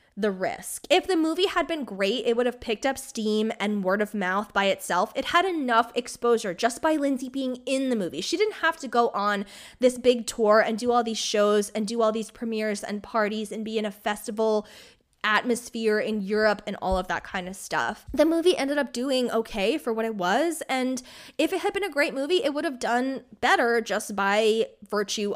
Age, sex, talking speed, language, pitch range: 20-39, female, 220 wpm, English, 195-255 Hz